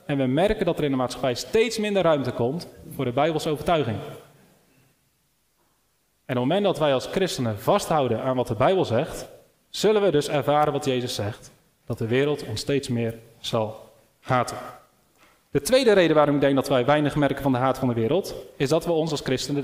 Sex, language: male, Dutch